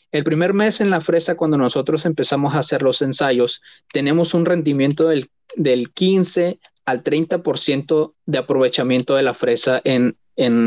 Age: 30-49